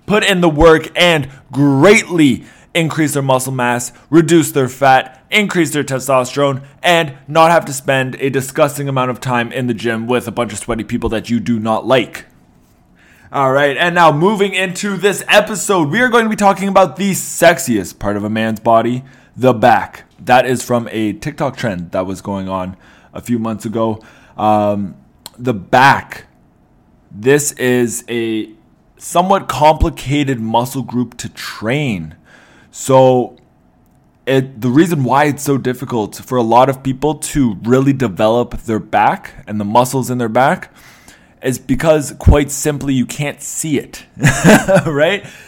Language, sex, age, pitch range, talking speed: English, male, 20-39, 115-155 Hz, 160 wpm